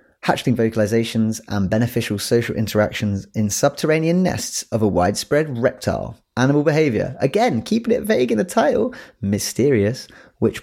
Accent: British